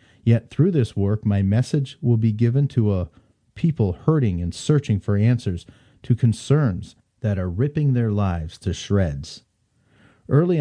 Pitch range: 100-125 Hz